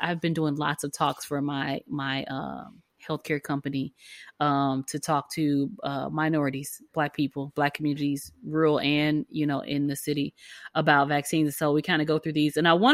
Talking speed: 190 wpm